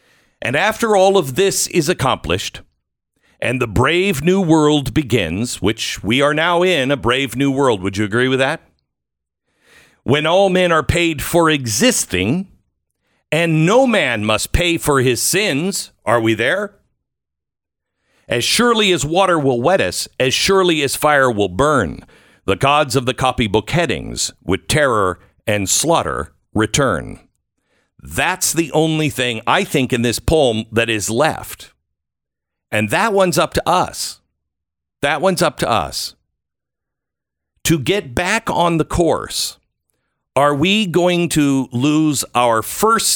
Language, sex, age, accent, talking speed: English, male, 50-69, American, 145 wpm